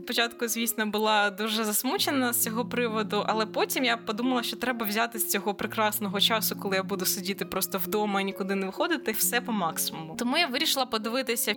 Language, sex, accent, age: Ukrainian, female, native, 20-39